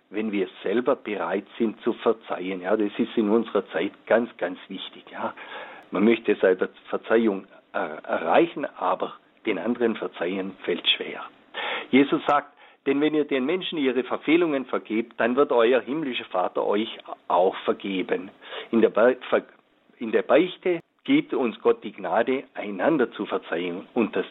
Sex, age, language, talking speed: male, 50-69, German, 155 wpm